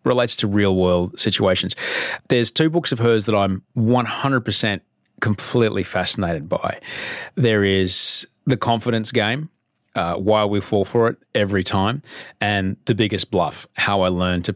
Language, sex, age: English, male, 30-49